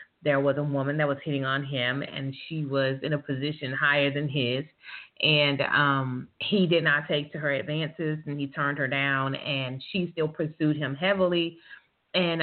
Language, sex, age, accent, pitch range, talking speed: English, female, 30-49, American, 140-170 Hz, 190 wpm